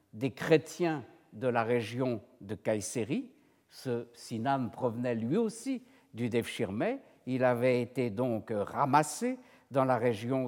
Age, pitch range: 60-79, 115-150 Hz